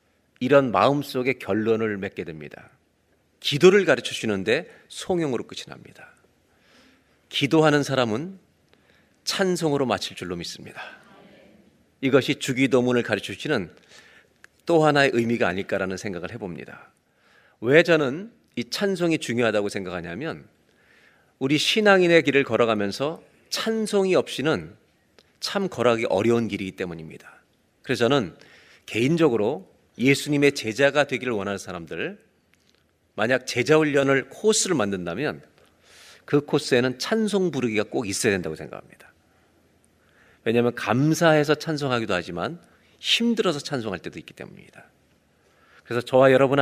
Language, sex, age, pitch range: Korean, male, 40-59, 115-165 Hz